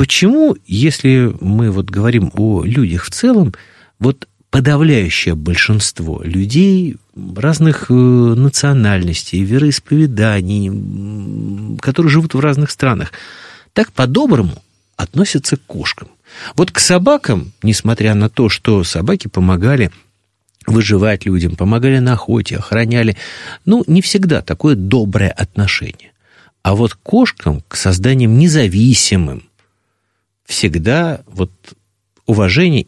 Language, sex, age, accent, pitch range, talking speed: Russian, male, 50-69, native, 95-145 Hz, 105 wpm